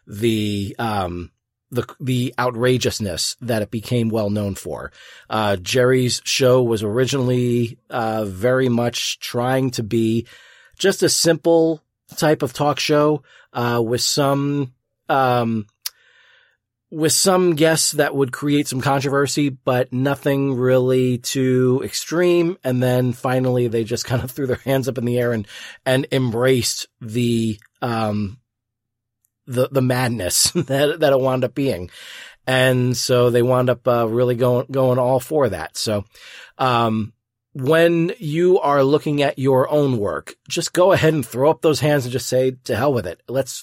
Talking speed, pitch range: 155 wpm, 115-140 Hz